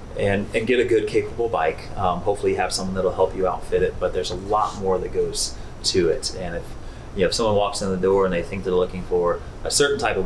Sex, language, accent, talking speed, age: male, English, American, 270 wpm, 30-49